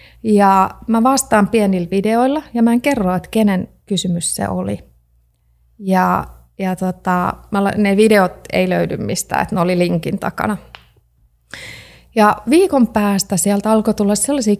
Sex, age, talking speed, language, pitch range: female, 30-49, 150 wpm, Finnish, 180-220 Hz